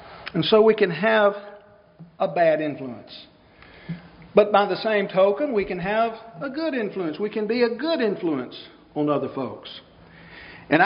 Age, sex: 50-69, male